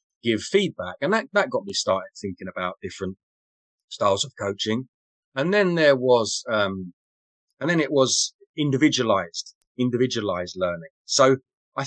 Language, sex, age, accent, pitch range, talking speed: English, male, 30-49, British, 100-145 Hz, 140 wpm